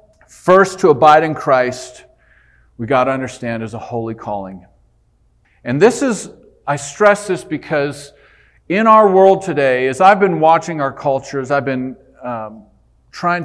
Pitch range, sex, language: 120-155 Hz, male, English